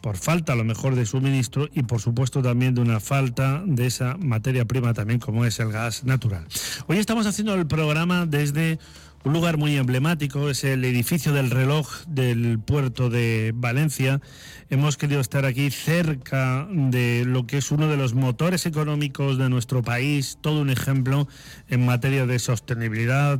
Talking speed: 170 wpm